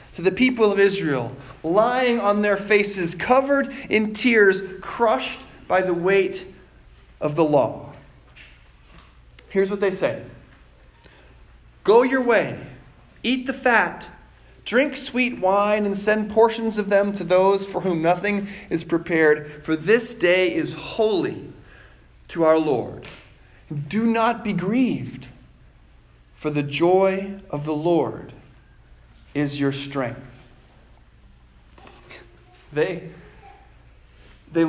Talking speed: 115 wpm